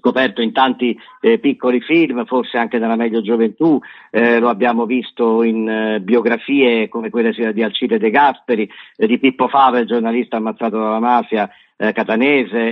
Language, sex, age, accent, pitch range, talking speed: Italian, male, 50-69, native, 110-130 Hz, 155 wpm